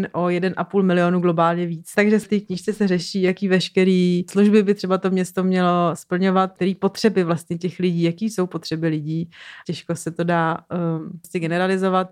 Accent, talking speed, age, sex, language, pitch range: native, 175 wpm, 30-49, female, Czech, 170-190 Hz